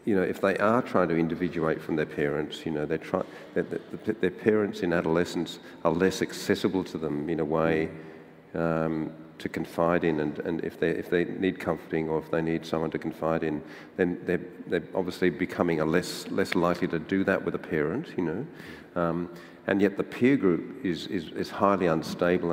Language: English